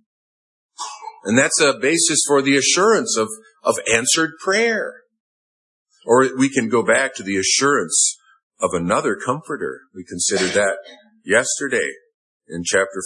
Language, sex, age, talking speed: English, male, 50-69, 130 wpm